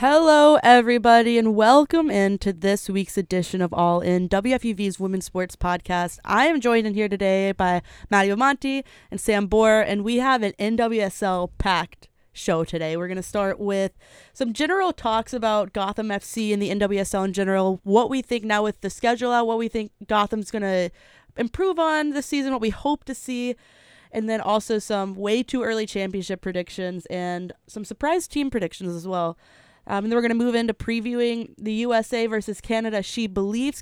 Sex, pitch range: female, 195-235 Hz